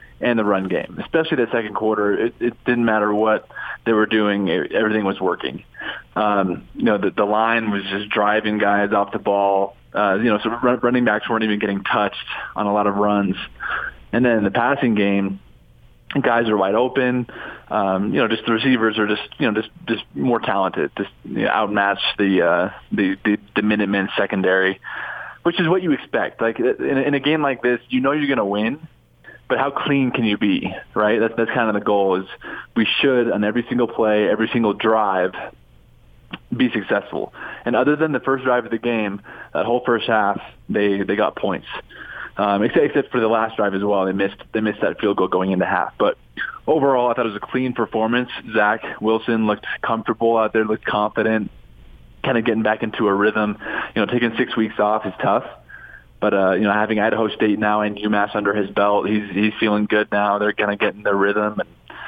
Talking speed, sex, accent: 210 wpm, male, American